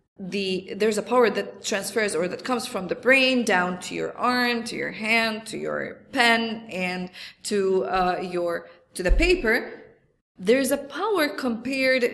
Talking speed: 165 wpm